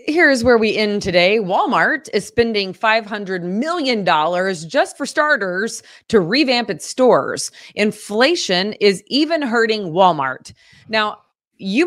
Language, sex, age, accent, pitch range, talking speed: English, female, 30-49, American, 170-225 Hz, 120 wpm